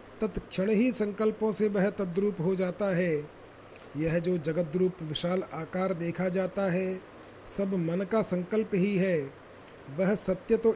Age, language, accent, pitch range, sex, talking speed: 40-59, Hindi, native, 175-210 Hz, male, 145 wpm